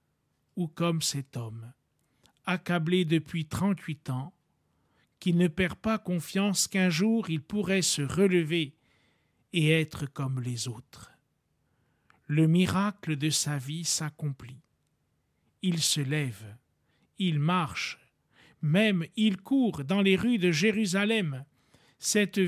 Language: French